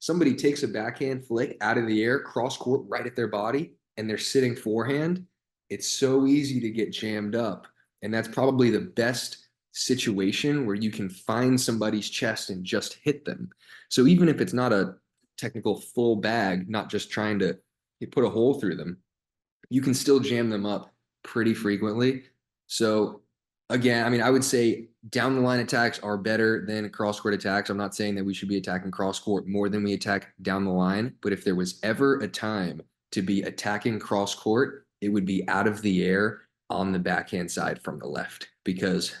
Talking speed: 195 wpm